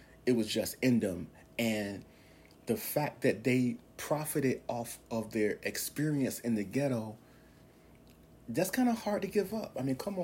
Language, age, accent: English, 30-49, American